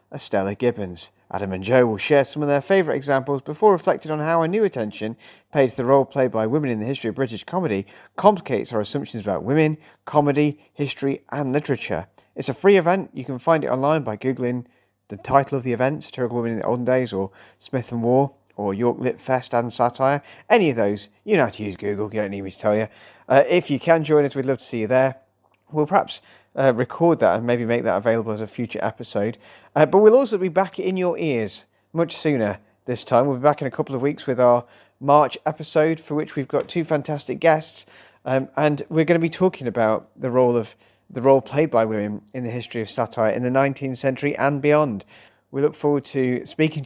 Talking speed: 230 wpm